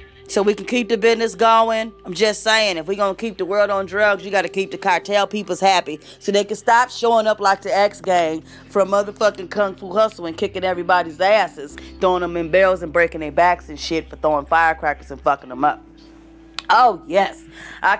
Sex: female